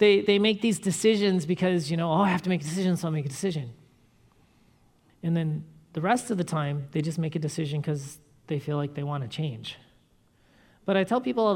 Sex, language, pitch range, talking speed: male, English, 155-215 Hz, 235 wpm